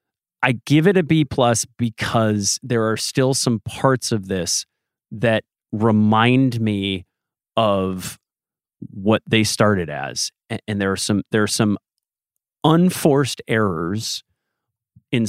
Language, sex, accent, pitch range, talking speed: English, male, American, 105-125 Hz, 130 wpm